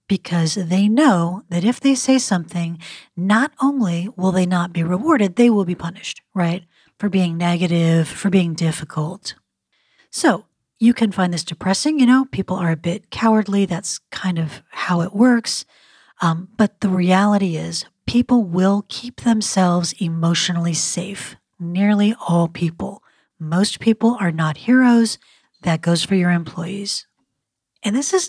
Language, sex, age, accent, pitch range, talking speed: English, female, 40-59, American, 170-220 Hz, 155 wpm